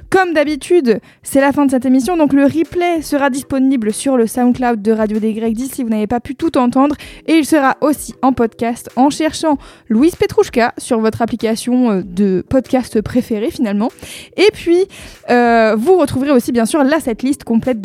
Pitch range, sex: 230-305 Hz, female